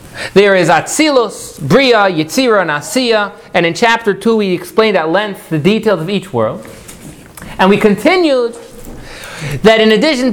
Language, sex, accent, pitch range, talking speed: English, male, American, 180-255 Hz, 150 wpm